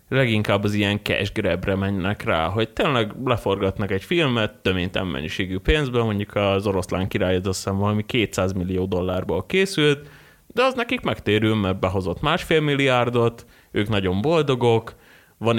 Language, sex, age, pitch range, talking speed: Hungarian, male, 30-49, 95-120 Hz, 140 wpm